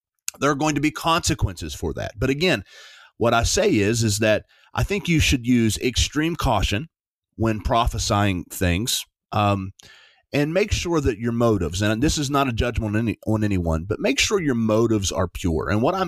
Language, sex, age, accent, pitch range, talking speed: English, male, 30-49, American, 105-145 Hz, 195 wpm